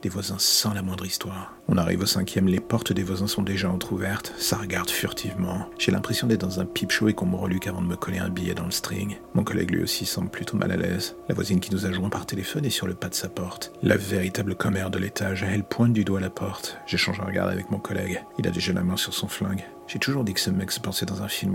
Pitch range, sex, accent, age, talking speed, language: 90-100 Hz, male, French, 40-59, 280 wpm, French